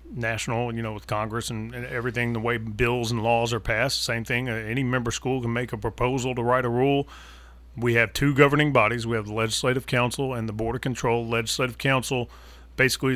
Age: 40-59